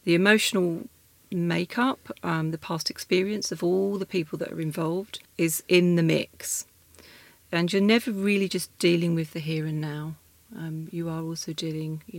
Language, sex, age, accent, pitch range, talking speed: English, female, 40-59, British, 160-195 Hz, 170 wpm